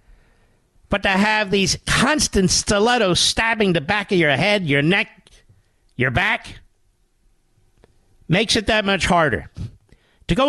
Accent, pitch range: American, 145-230 Hz